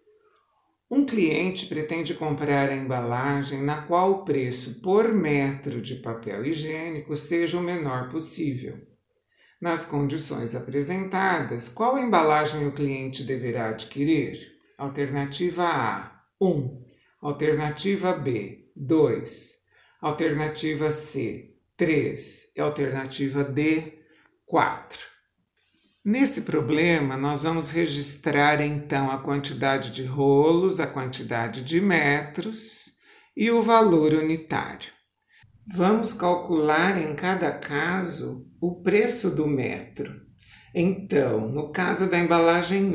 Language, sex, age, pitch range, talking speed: Portuguese, male, 60-79, 140-175 Hz, 100 wpm